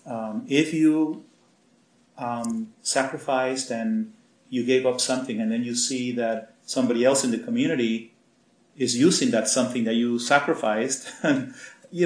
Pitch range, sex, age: 120-185 Hz, male, 40-59